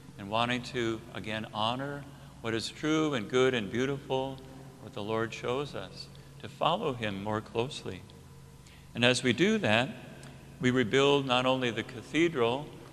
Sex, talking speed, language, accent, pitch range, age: male, 155 wpm, English, American, 115-140 Hz, 50-69